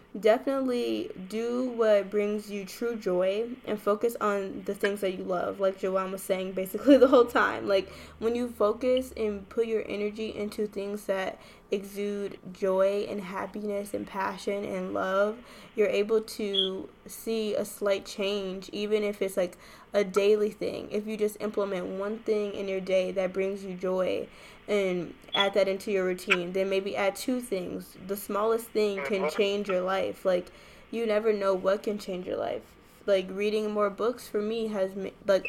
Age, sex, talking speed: 10-29, female, 175 wpm